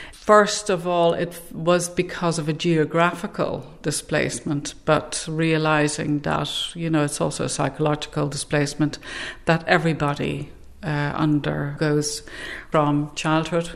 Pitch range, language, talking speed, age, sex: 150-175 Hz, English, 115 wpm, 50-69, female